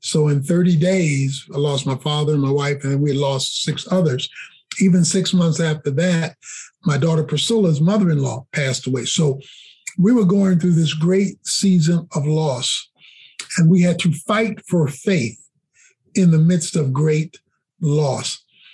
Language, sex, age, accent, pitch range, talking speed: English, male, 50-69, American, 150-180 Hz, 160 wpm